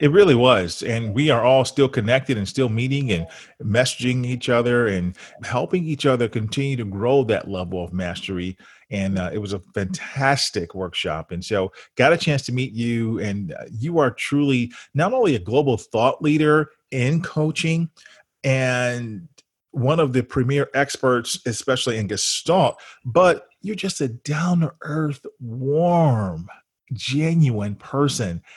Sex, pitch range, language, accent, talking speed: male, 110-140 Hz, English, American, 155 wpm